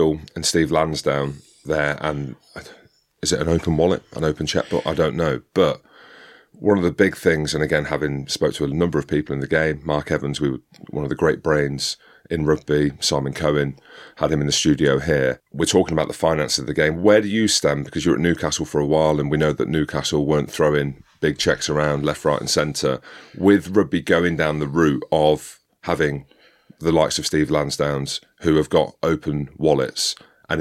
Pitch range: 70-80 Hz